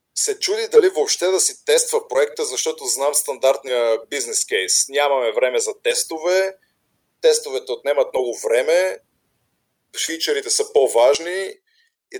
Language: Bulgarian